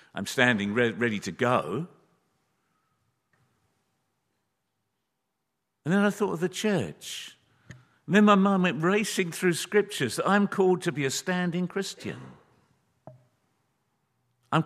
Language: English